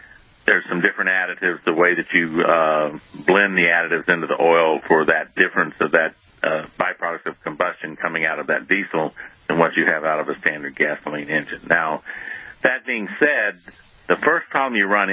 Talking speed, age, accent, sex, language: 190 wpm, 50-69, American, male, English